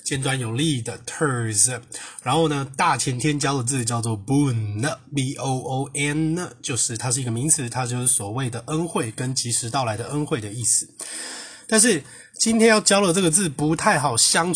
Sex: male